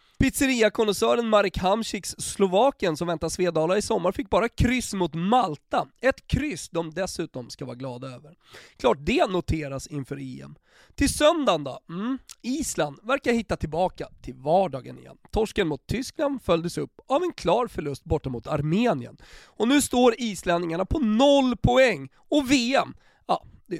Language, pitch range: Swedish, 145-235 Hz